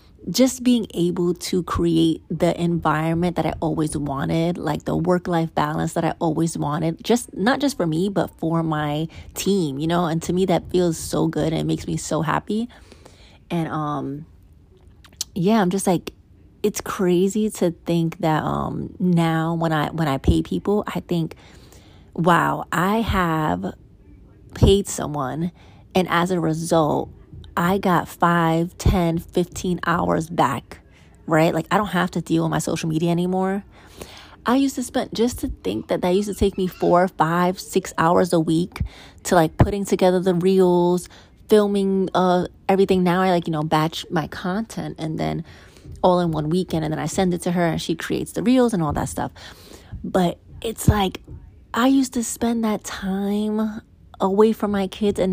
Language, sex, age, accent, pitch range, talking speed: English, female, 30-49, American, 160-195 Hz, 180 wpm